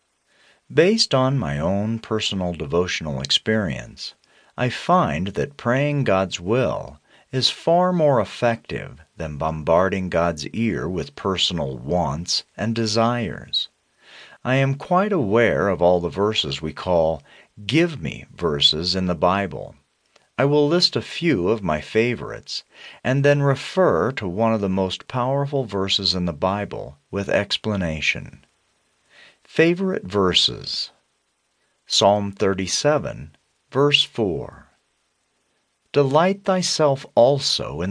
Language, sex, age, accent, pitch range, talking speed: English, male, 40-59, American, 95-140 Hz, 120 wpm